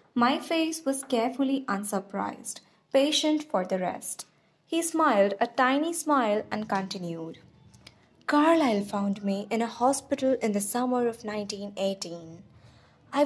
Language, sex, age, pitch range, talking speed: English, female, 20-39, 205-280 Hz, 125 wpm